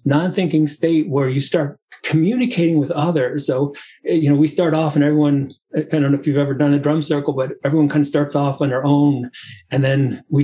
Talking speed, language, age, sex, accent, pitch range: 220 wpm, English, 30-49, male, American, 130-160 Hz